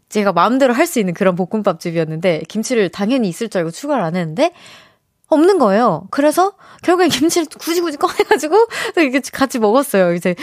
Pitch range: 185-270 Hz